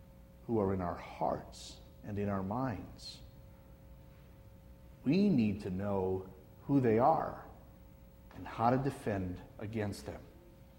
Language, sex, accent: English, male, American